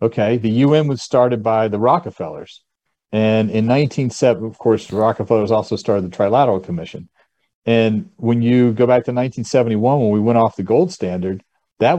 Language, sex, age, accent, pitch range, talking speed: English, male, 40-59, American, 100-125 Hz, 180 wpm